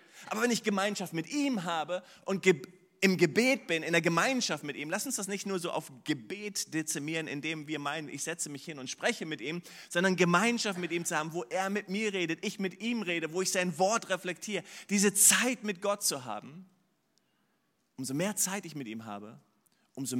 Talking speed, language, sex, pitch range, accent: 210 wpm, German, male, 130-185 Hz, German